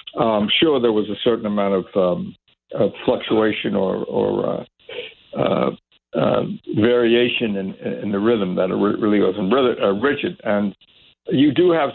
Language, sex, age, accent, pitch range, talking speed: English, male, 60-79, American, 95-125 Hz, 155 wpm